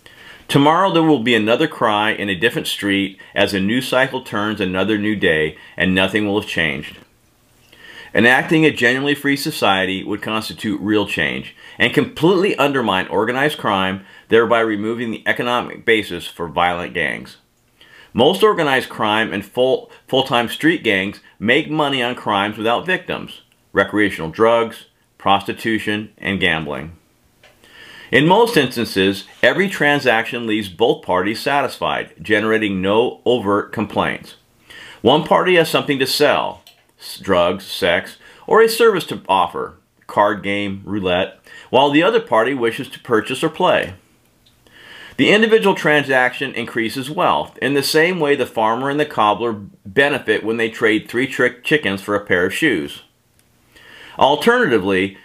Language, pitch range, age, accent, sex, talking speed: English, 100-145 Hz, 40-59, American, male, 140 wpm